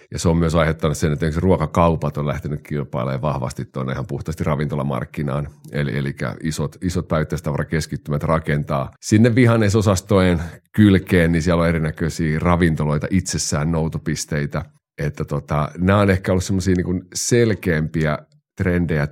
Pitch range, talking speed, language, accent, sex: 75-95 Hz, 130 wpm, Finnish, native, male